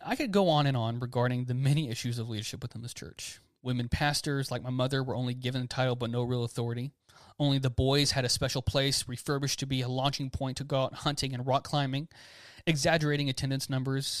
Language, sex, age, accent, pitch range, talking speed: English, male, 30-49, American, 125-145 Hz, 215 wpm